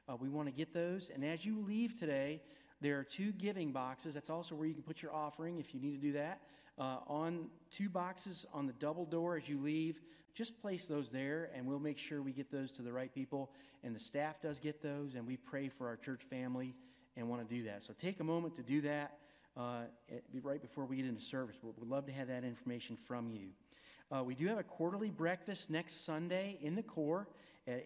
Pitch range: 135-170 Hz